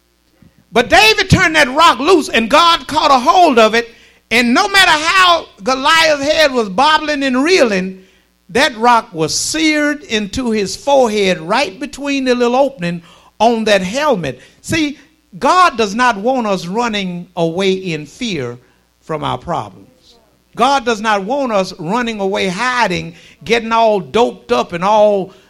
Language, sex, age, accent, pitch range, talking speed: English, male, 50-69, American, 175-260 Hz, 155 wpm